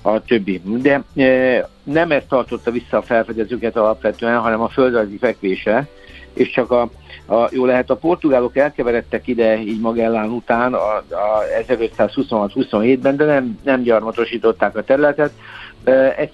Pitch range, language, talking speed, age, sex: 110-130 Hz, Hungarian, 135 wpm, 60-79, male